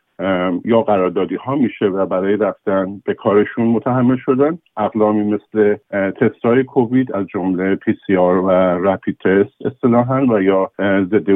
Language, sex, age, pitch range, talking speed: Persian, male, 50-69, 95-105 Hz, 150 wpm